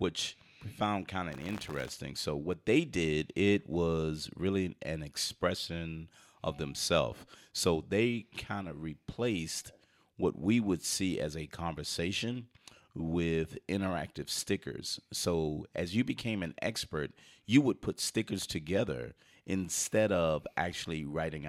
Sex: male